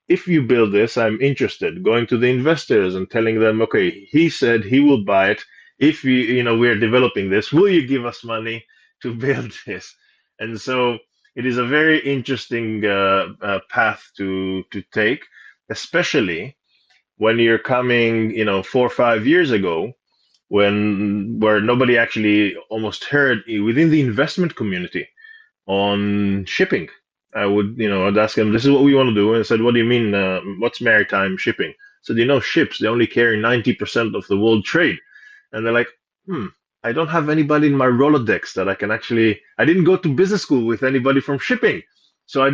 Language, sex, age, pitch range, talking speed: English, male, 20-39, 105-140 Hz, 195 wpm